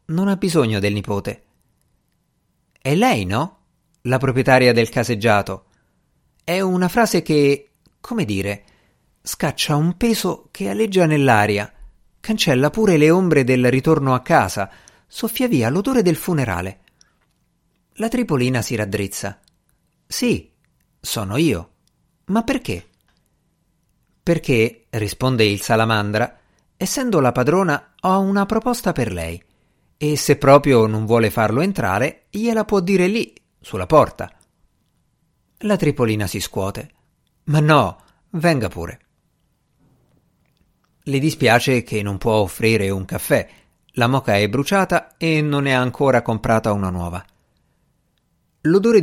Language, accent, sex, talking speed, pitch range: Italian, native, male, 120 wpm, 105-170 Hz